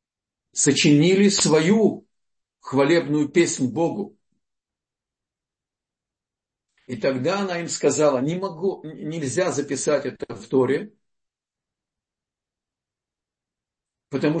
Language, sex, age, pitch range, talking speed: Russian, male, 50-69, 135-210 Hz, 75 wpm